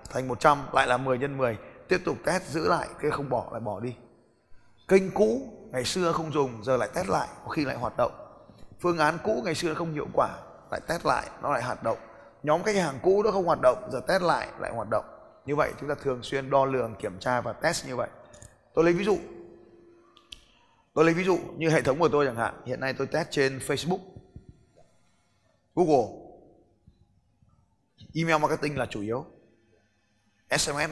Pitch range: 120-160 Hz